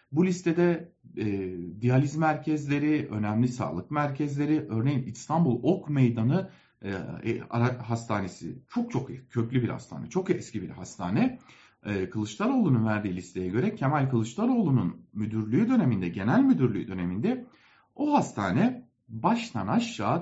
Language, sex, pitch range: German, male, 115-190 Hz